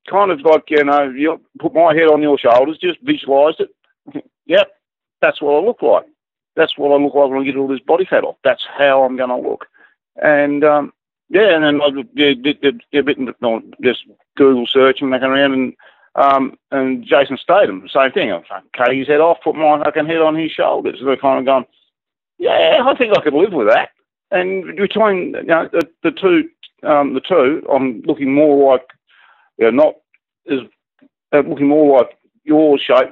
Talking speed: 210 wpm